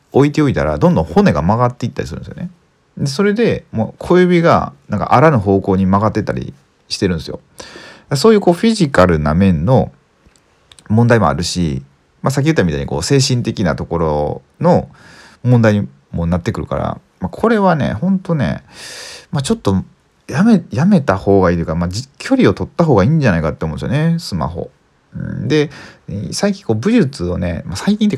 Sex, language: male, Japanese